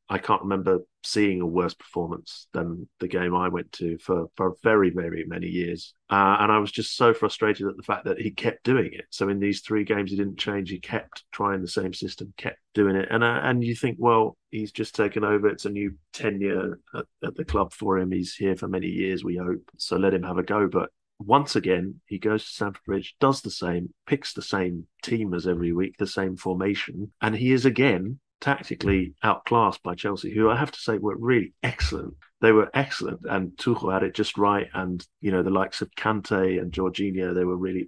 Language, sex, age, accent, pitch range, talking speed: English, male, 30-49, British, 90-105 Hz, 225 wpm